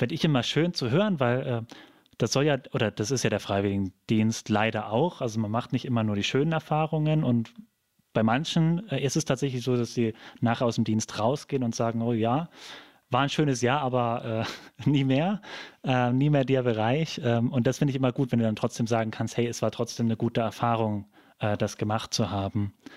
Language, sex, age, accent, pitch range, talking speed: German, male, 30-49, German, 110-135 Hz, 220 wpm